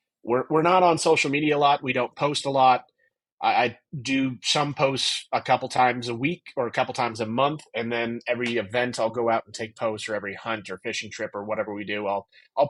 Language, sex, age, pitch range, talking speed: English, male, 30-49, 105-135 Hz, 240 wpm